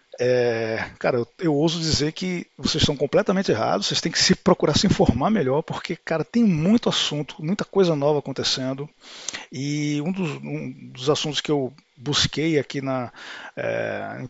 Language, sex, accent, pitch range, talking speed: Portuguese, male, Brazilian, 130-165 Hz, 150 wpm